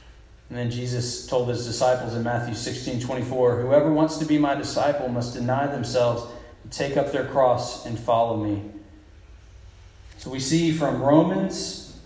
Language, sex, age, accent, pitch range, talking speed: English, male, 40-59, American, 105-125 Hz, 160 wpm